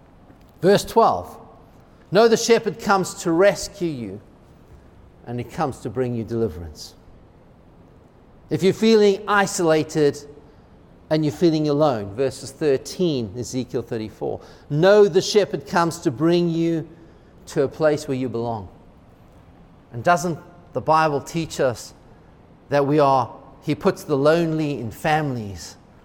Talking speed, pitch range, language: 130 wpm, 130-175 Hz, English